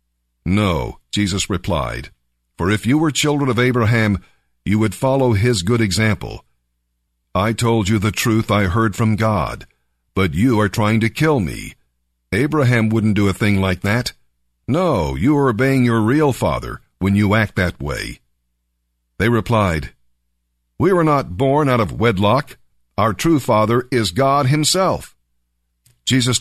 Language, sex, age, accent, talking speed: English, male, 50-69, American, 150 wpm